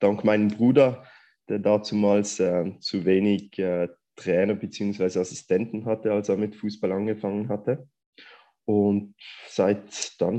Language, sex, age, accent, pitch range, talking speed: German, male, 20-39, German, 100-115 Hz, 125 wpm